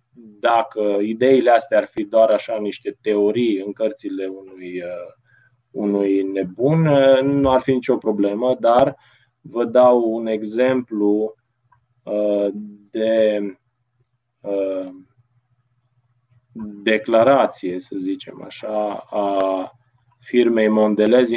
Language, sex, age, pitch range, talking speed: Romanian, male, 20-39, 105-125 Hz, 90 wpm